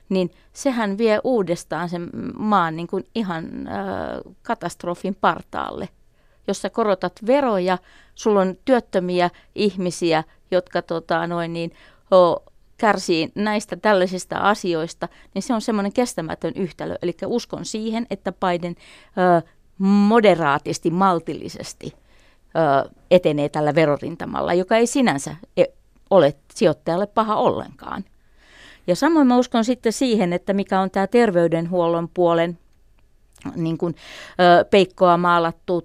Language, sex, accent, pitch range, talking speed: Finnish, female, native, 165-200 Hz, 115 wpm